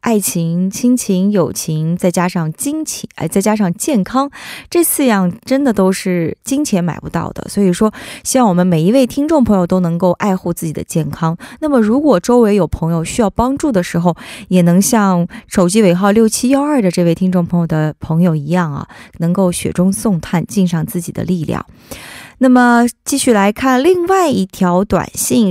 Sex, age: female, 20-39